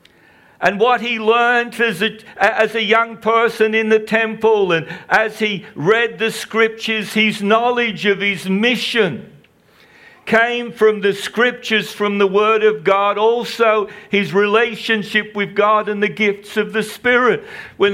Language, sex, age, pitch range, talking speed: English, male, 60-79, 170-225 Hz, 145 wpm